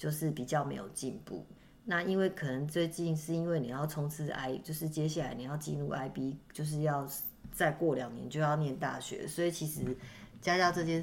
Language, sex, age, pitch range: Chinese, female, 30-49, 145-170 Hz